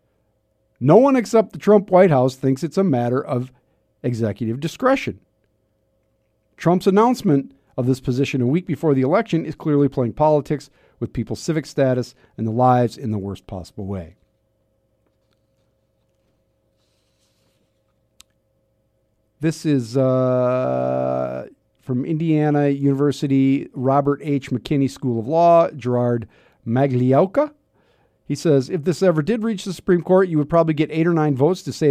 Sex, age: male, 50-69